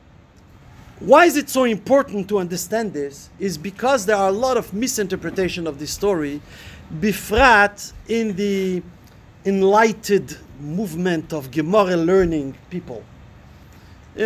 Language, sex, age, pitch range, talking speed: English, male, 50-69, 185-255 Hz, 120 wpm